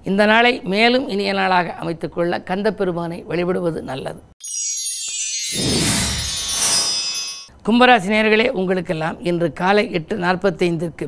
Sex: female